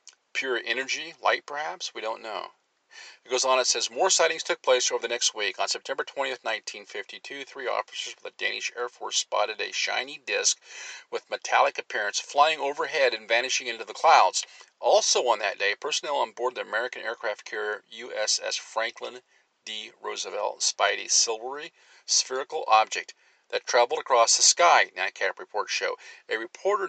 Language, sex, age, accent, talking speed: English, male, 40-59, American, 165 wpm